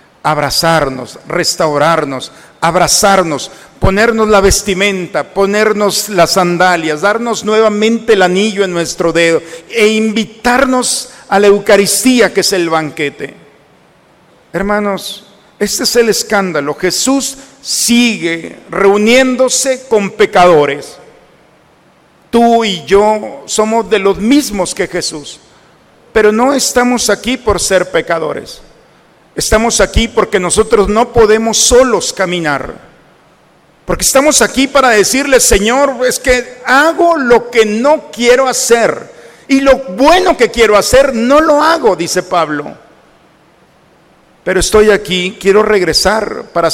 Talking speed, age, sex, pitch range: 115 wpm, 50-69, male, 185-245 Hz